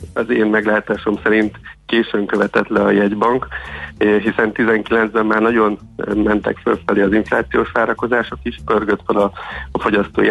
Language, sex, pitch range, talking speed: Hungarian, male, 100-115 Hz, 135 wpm